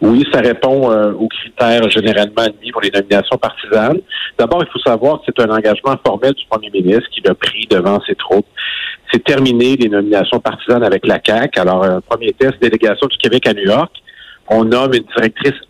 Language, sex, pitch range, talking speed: French, male, 110-165 Hz, 200 wpm